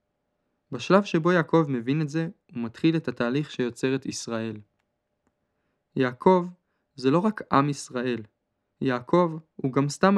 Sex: male